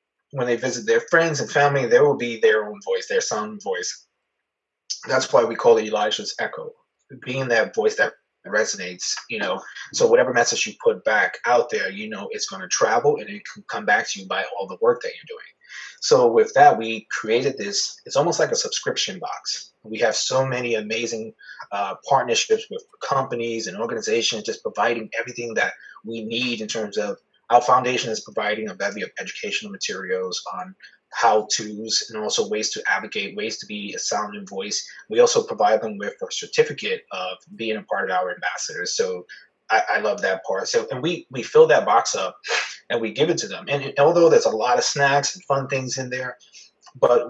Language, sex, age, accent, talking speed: English, male, 30-49, American, 205 wpm